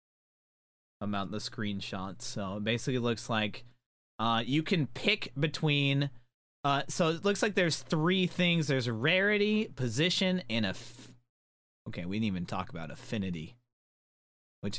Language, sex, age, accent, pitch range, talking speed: English, male, 30-49, American, 100-165 Hz, 140 wpm